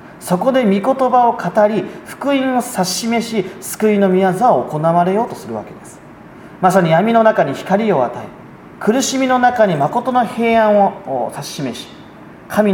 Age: 40-59